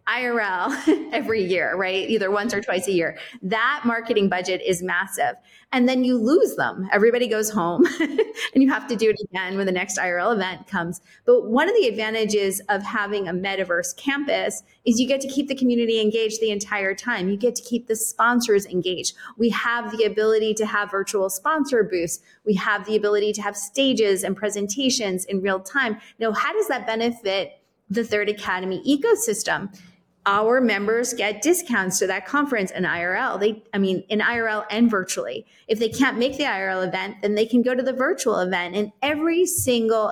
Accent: American